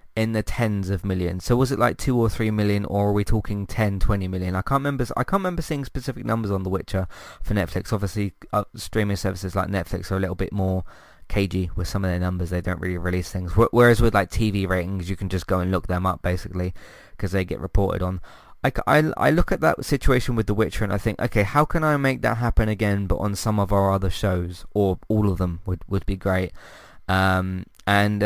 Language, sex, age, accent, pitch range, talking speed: English, male, 20-39, British, 95-110 Hz, 230 wpm